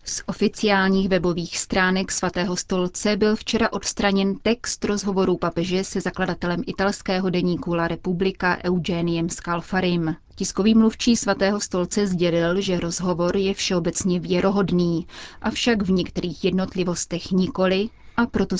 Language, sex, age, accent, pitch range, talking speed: Czech, female, 30-49, native, 175-200 Hz, 120 wpm